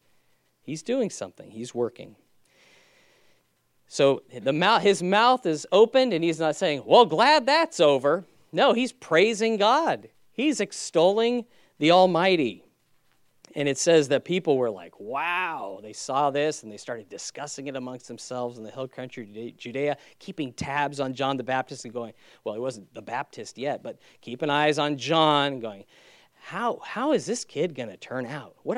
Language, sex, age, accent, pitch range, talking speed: English, male, 40-59, American, 130-175 Hz, 170 wpm